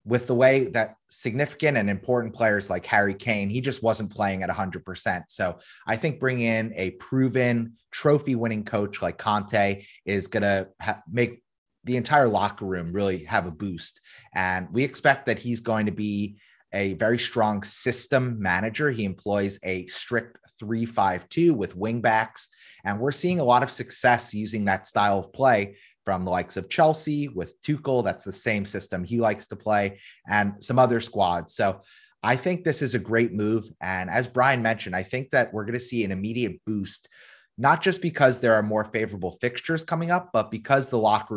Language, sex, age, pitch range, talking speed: English, male, 30-49, 100-125 Hz, 190 wpm